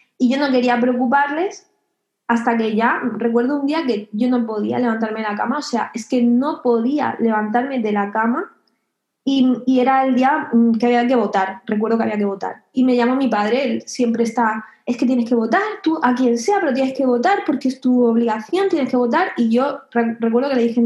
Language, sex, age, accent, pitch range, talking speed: Spanish, female, 20-39, Spanish, 235-295 Hz, 220 wpm